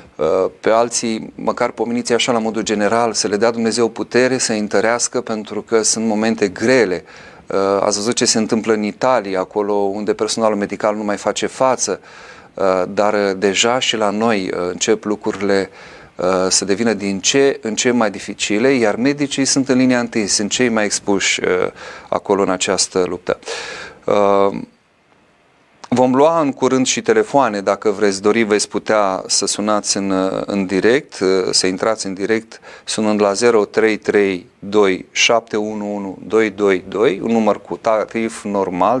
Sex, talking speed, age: male, 140 wpm, 30-49